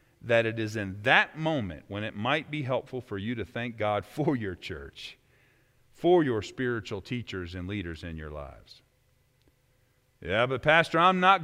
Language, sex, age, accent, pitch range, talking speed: English, male, 40-59, American, 105-135 Hz, 175 wpm